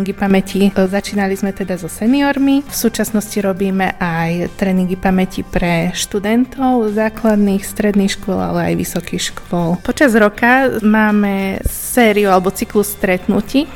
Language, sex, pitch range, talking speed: Slovak, female, 180-220 Hz, 120 wpm